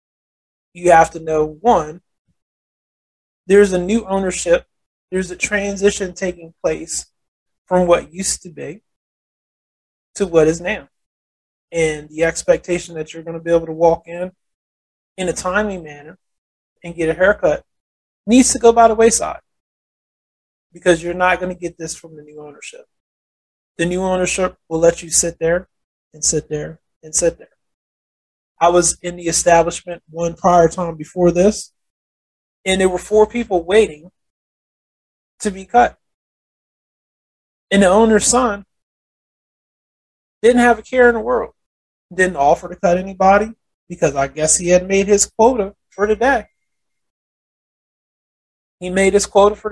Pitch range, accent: 165-205 Hz, American